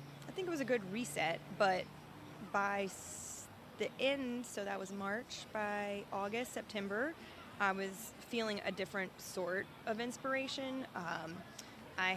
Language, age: English, 20-39